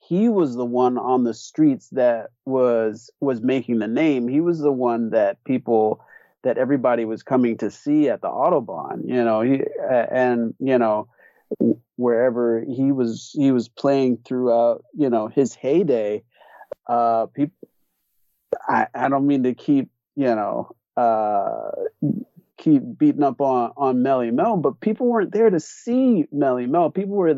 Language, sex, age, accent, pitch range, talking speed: English, male, 30-49, American, 120-155 Hz, 160 wpm